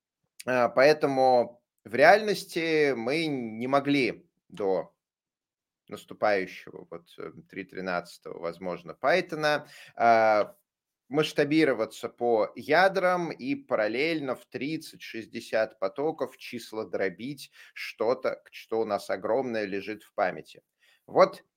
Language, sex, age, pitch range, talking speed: Russian, male, 30-49, 120-155 Hz, 85 wpm